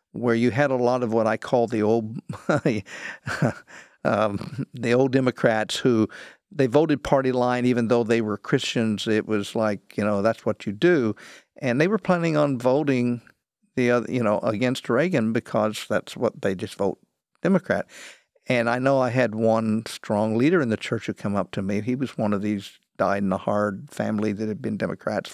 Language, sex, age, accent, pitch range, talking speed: English, male, 50-69, American, 105-130 Hz, 190 wpm